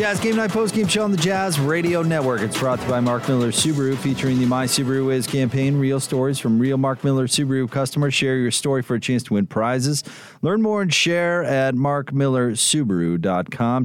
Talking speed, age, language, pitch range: 205 wpm, 30-49, English, 115-145 Hz